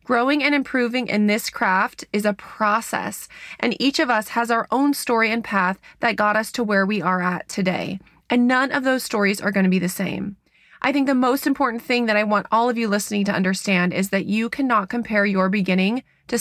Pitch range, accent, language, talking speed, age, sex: 200-250 Hz, American, English, 225 wpm, 20-39, female